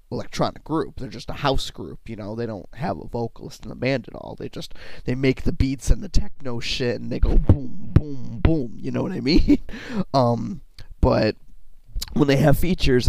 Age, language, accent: 20-39, English, American